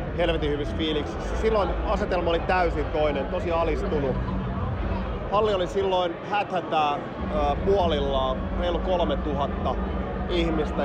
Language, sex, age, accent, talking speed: Finnish, male, 30-49, native, 105 wpm